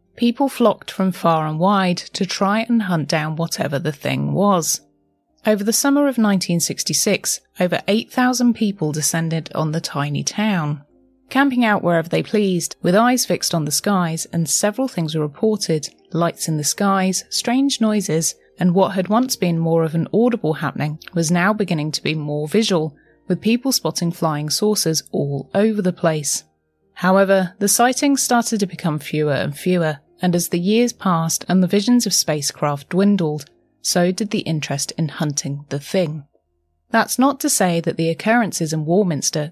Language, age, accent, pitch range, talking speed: English, 30-49, British, 155-210 Hz, 170 wpm